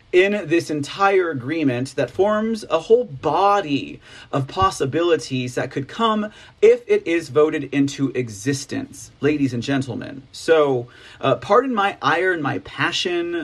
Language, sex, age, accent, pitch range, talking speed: English, male, 40-59, American, 130-170 Hz, 140 wpm